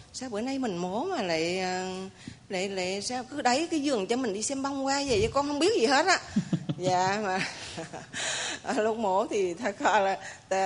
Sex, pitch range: female, 185-235 Hz